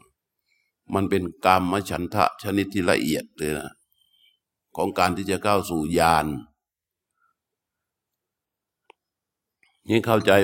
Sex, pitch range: male, 95-115 Hz